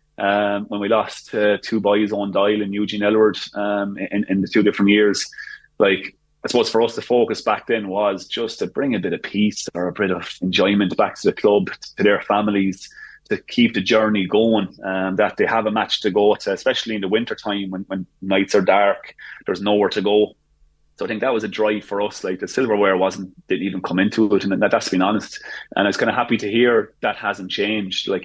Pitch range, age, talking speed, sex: 95-105 Hz, 30-49, 235 wpm, male